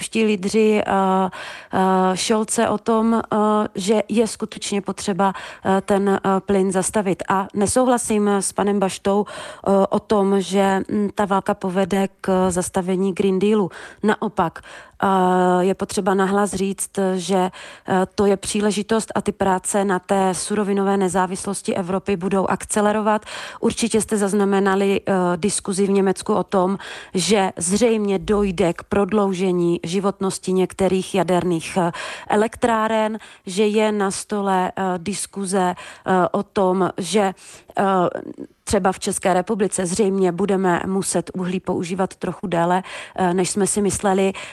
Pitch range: 190-215 Hz